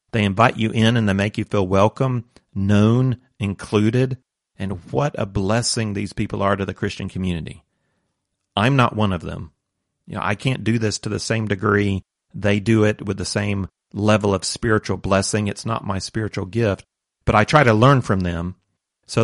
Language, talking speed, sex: English, 190 wpm, male